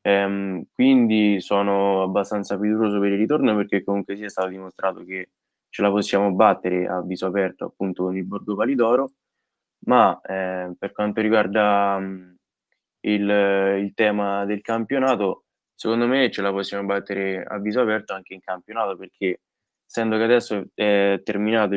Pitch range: 95-105 Hz